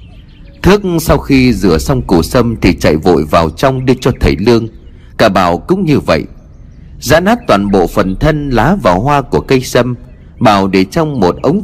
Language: Vietnamese